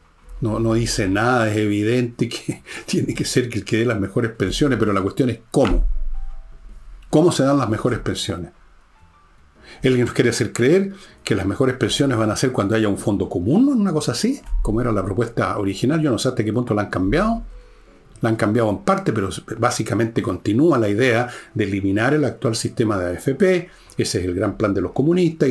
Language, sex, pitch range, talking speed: Spanish, male, 100-135 Hz, 205 wpm